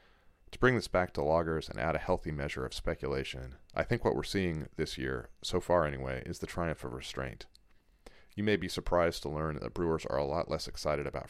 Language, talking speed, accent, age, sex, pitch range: English, 225 wpm, American, 40-59, male, 75-90 Hz